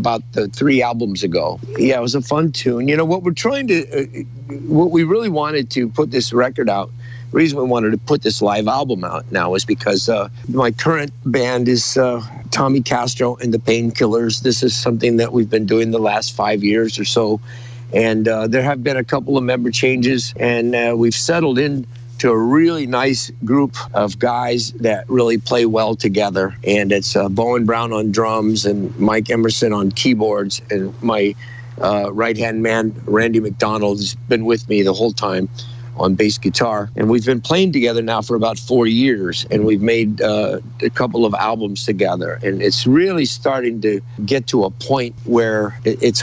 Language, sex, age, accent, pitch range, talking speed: English, male, 50-69, American, 110-125 Hz, 190 wpm